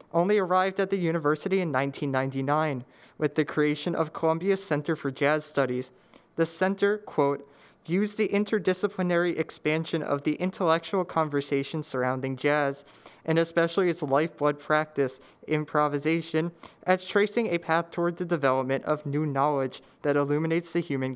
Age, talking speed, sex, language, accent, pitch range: 20-39, 140 wpm, male, English, American, 140-180 Hz